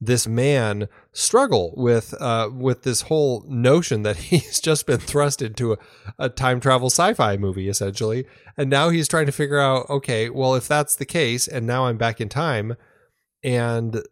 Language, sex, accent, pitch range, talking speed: English, male, American, 110-140 Hz, 180 wpm